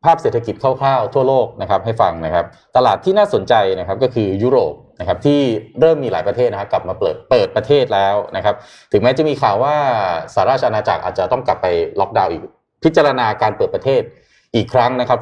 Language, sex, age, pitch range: Thai, male, 20-39, 110-145 Hz